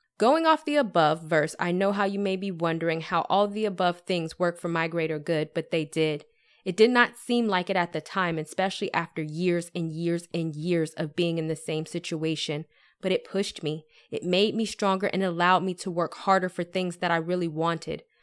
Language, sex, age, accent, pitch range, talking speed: English, female, 20-39, American, 165-190 Hz, 220 wpm